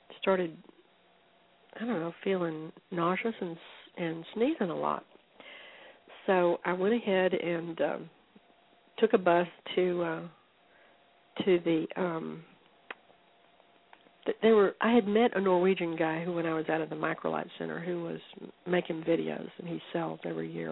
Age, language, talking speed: 60-79, English, 150 wpm